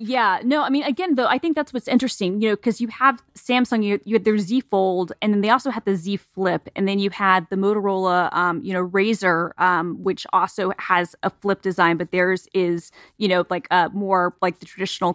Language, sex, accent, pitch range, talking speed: English, female, American, 180-215 Hz, 235 wpm